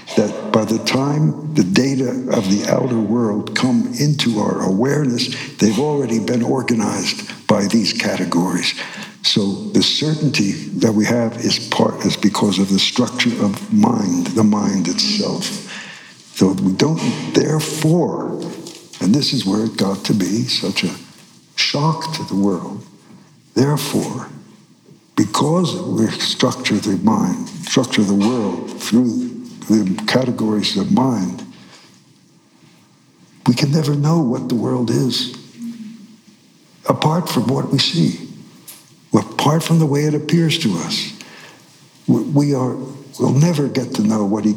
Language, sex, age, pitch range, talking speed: English, male, 60-79, 115-170 Hz, 135 wpm